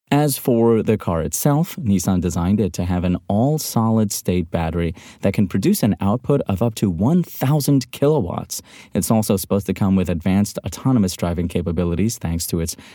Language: English